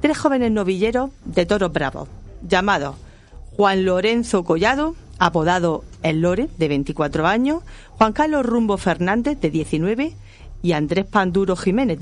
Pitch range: 160-225 Hz